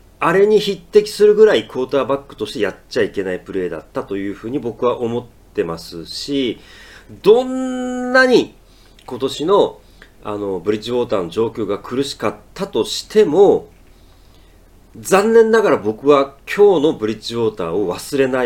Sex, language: male, Japanese